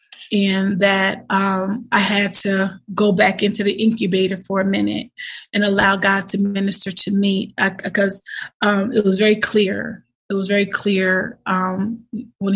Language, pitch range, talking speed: English, 190-205 Hz, 160 wpm